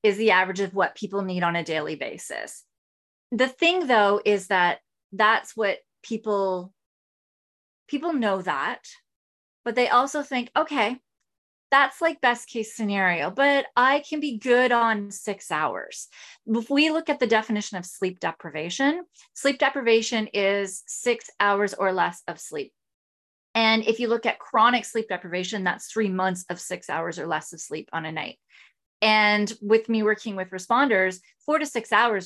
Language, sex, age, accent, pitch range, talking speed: English, female, 30-49, American, 185-235 Hz, 165 wpm